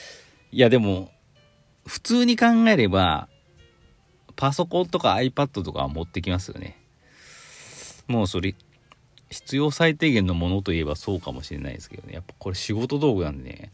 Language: Japanese